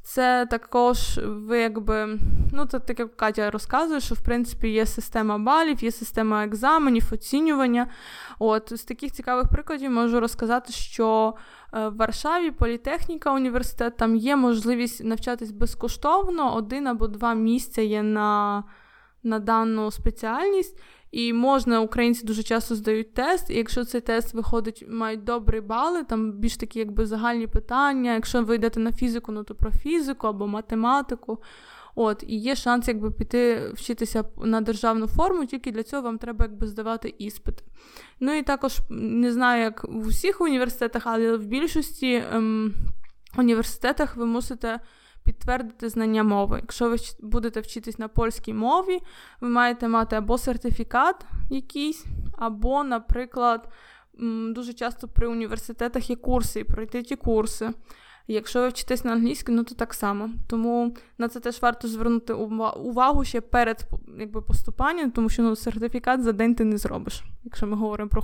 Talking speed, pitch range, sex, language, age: 150 wpm, 225-250 Hz, female, Ukrainian, 20-39